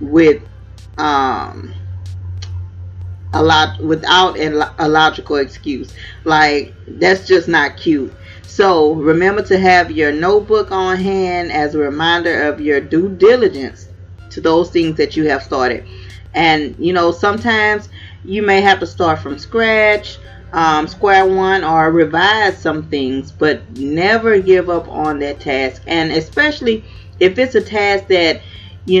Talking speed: 140 wpm